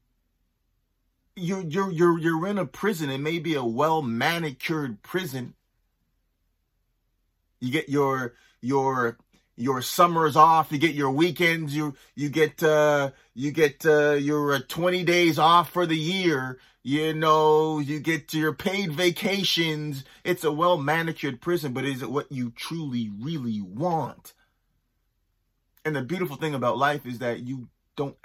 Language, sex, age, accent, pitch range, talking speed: English, male, 30-49, American, 110-155 Hz, 145 wpm